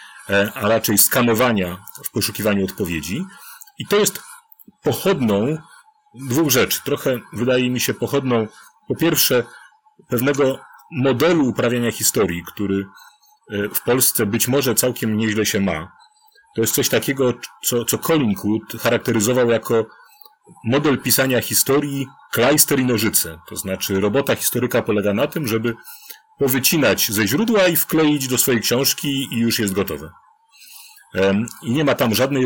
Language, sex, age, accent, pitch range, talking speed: Polish, male, 40-59, native, 115-165 Hz, 135 wpm